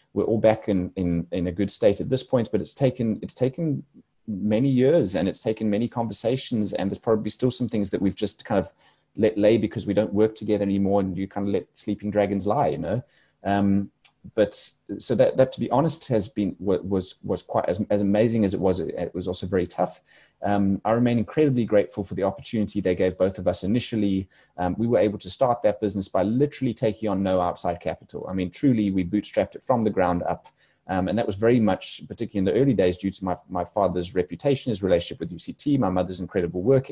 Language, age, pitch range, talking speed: English, 30-49, 95-120 Hz, 230 wpm